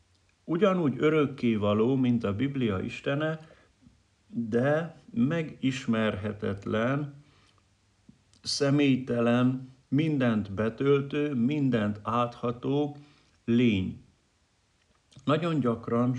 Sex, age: male, 50-69